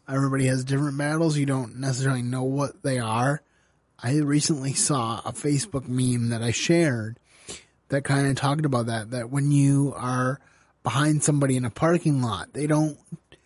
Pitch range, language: 120-145 Hz, English